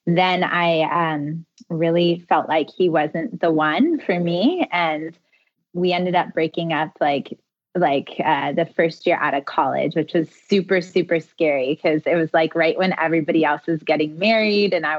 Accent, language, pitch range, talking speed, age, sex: American, English, 160-195 Hz, 180 wpm, 20-39, female